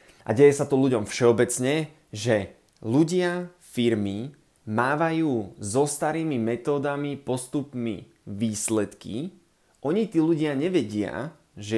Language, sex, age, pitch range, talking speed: Slovak, male, 20-39, 115-135 Hz, 100 wpm